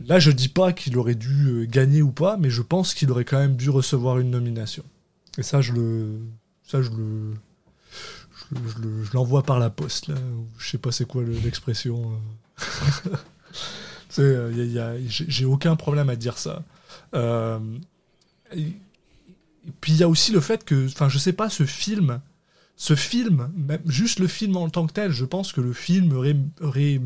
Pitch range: 130-175 Hz